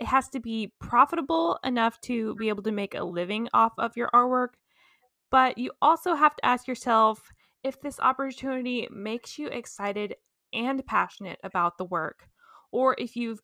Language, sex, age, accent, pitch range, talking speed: English, female, 20-39, American, 200-255 Hz, 170 wpm